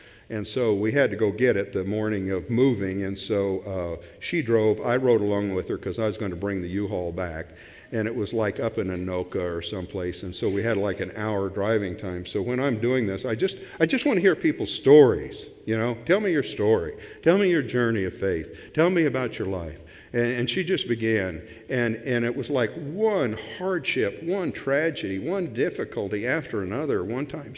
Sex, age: male, 50-69